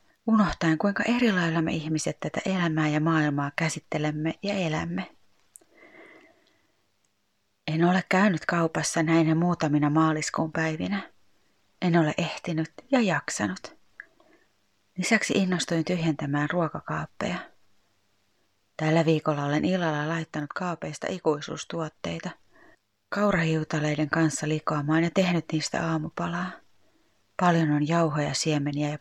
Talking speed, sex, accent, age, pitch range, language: 100 wpm, female, native, 30-49, 150-180 Hz, Finnish